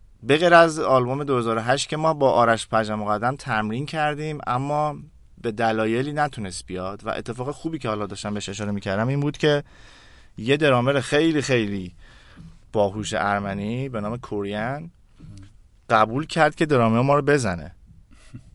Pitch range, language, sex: 110-145 Hz, Persian, male